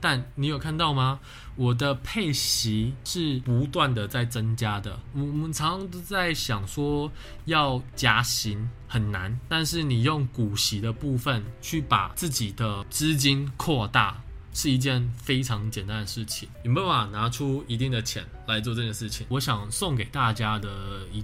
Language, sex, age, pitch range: Chinese, male, 20-39, 110-140 Hz